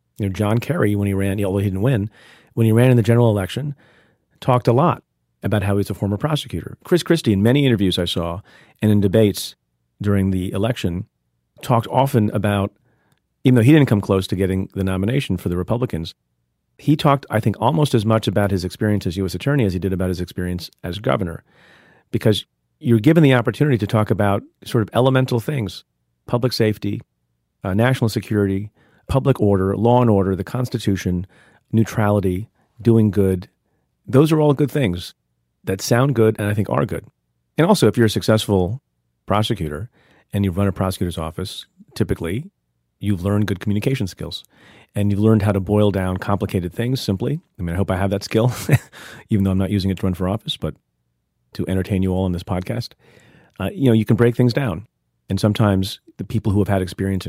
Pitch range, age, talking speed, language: 95-115 Hz, 40-59, 200 wpm, English